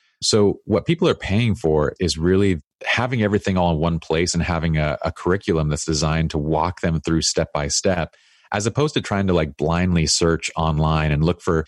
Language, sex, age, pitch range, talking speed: English, male, 30-49, 80-100 Hz, 205 wpm